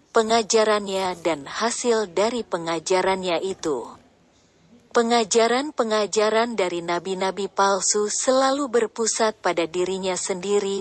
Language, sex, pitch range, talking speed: Indonesian, female, 185-225 Hz, 85 wpm